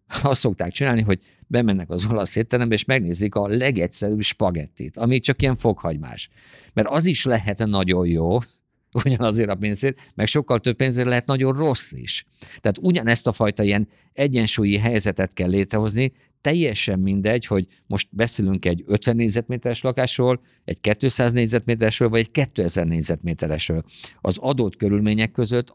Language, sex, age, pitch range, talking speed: Hungarian, male, 50-69, 100-125 Hz, 145 wpm